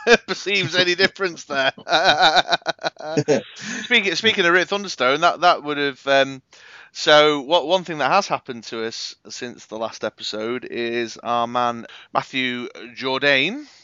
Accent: British